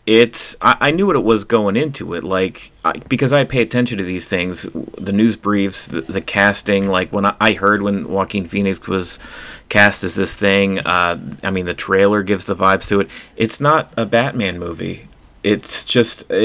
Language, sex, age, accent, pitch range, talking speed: English, male, 30-49, American, 95-110 Hz, 200 wpm